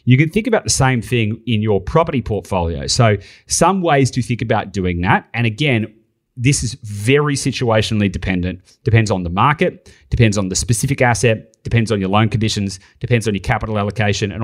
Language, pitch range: English, 105-130 Hz